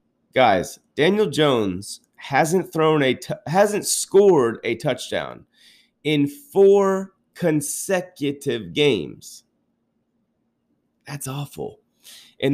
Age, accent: 30-49, American